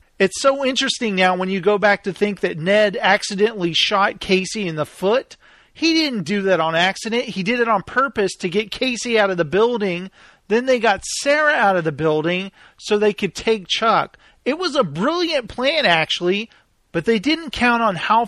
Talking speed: 200 wpm